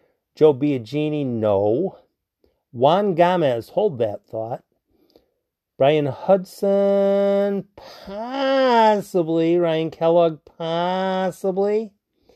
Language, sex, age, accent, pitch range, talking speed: English, male, 40-59, American, 135-175 Hz, 70 wpm